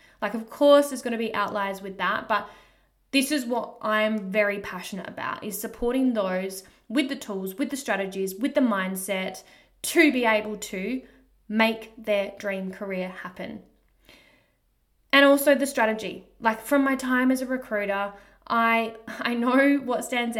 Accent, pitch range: Australian, 200-230 Hz